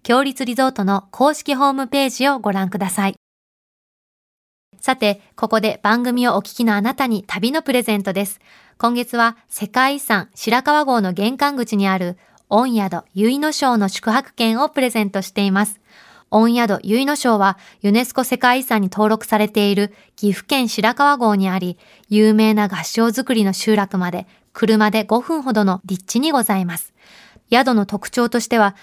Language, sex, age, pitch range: Japanese, female, 20-39, 200-245 Hz